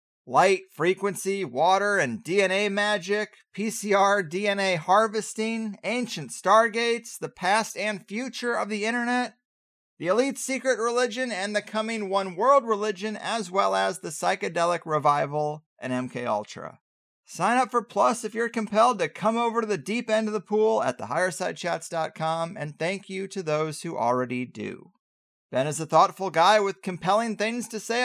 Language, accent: English, American